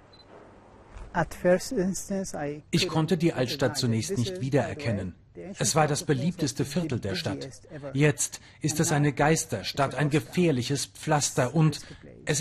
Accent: German